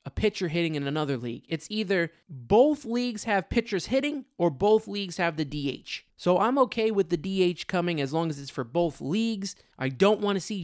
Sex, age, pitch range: male, 20-39, 165-240 Hz